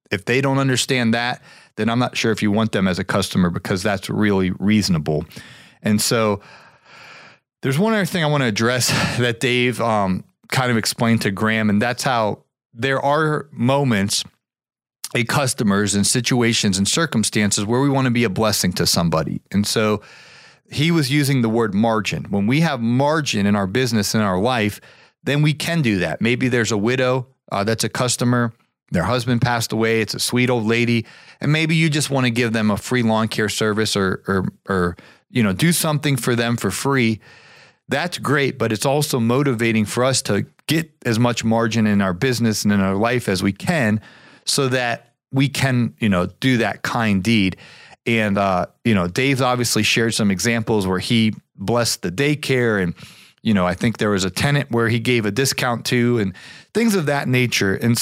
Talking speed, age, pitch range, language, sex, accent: 195 wpm, 40-59, 105-130 Hz, English, male, American